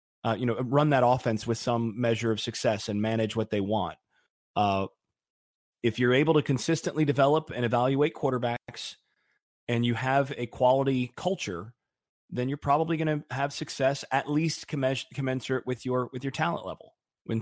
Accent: American